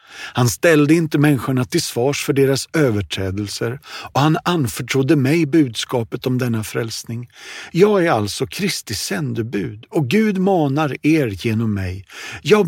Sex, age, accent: male, 50-69, native